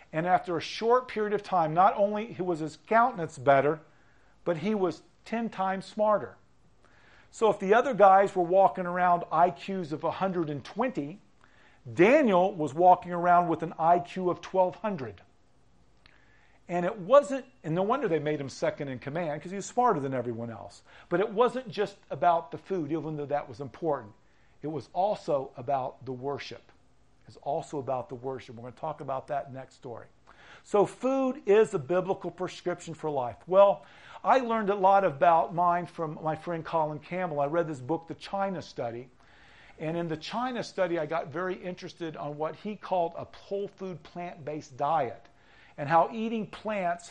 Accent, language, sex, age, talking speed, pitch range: American, English, male, 50-69, 175 wpm, 150-190 Hz